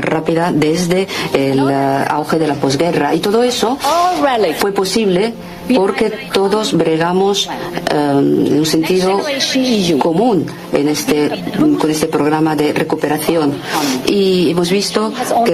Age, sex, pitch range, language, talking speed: 50-69, female, 155-200 Hz, Spanish, 110 wpm